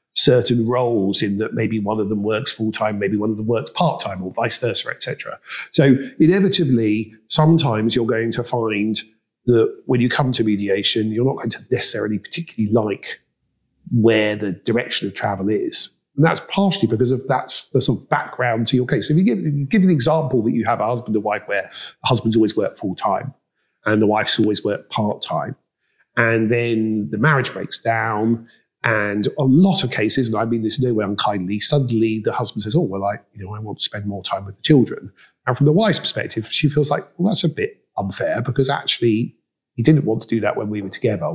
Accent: British